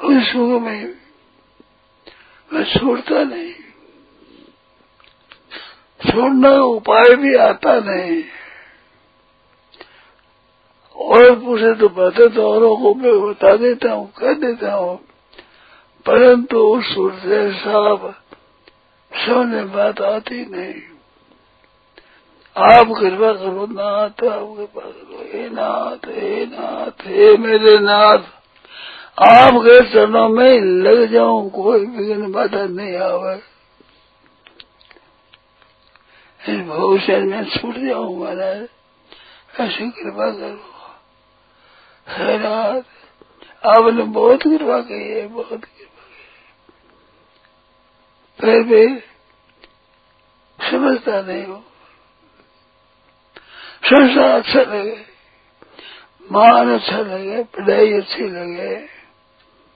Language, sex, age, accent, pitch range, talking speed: Hindi, male, 60-79, native, 205-270 Hz, 80 wpm